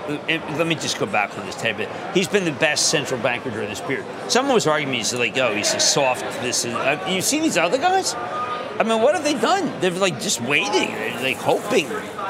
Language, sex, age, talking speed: English, male, 50-69, 235 wpm